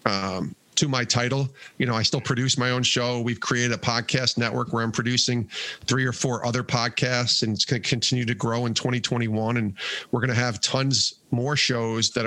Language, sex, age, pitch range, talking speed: English, male, 40-59, 110-130 Hz, 210 wpm